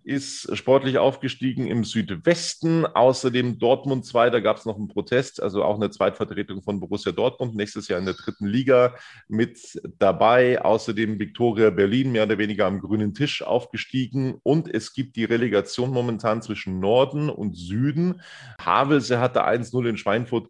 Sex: male